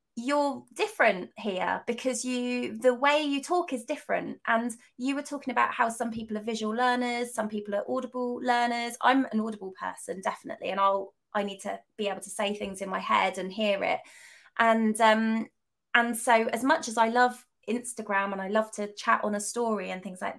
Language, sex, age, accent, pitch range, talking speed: English, female, 20-39, British, 205-255 Hz, 205 wpm